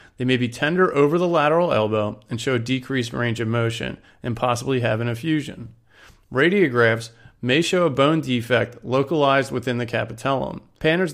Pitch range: 115-140 Hz